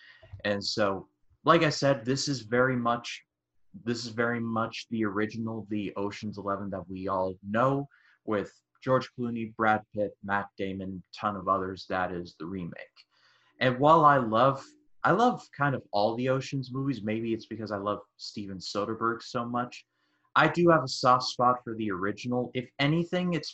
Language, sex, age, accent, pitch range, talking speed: English, male, 30-49, American, 105-135 Hz, 180 wpm